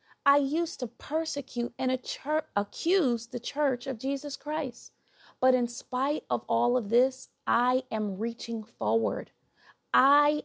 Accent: American